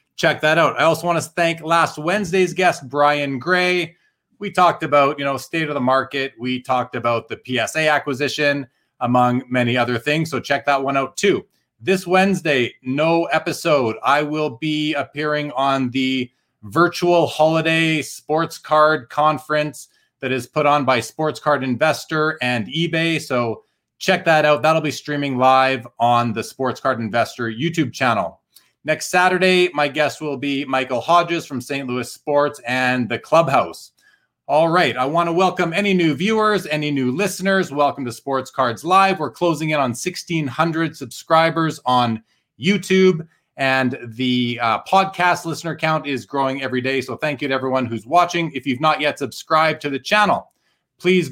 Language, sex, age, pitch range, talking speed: English, male, 30-49, 130-165 Hz, 170 wpm